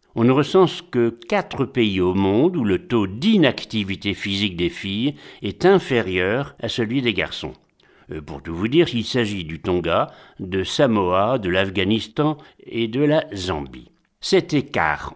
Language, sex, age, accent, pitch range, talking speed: French, male, 60-79, French, 100-150 Hz, 155 wpm